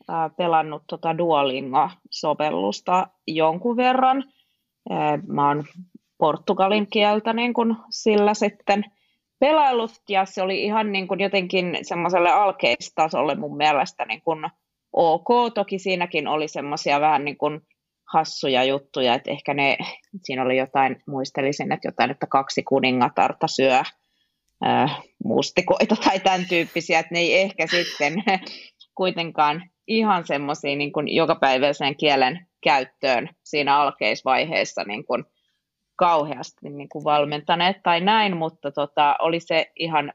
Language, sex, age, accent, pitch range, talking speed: Finnish, female, 30-49, native, 145-190 Hz, 115 wpm